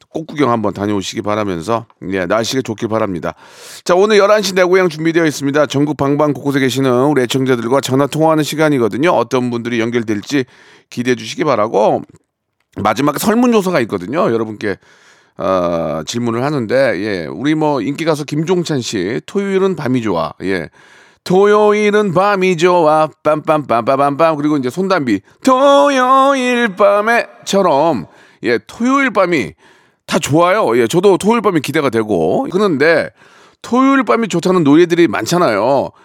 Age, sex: 40-59, male